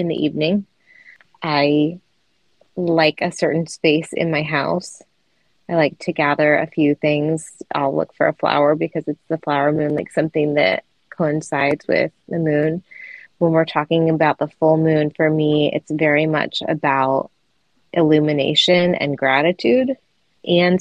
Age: 20-39